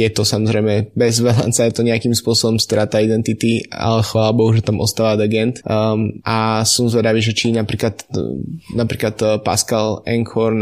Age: 20-39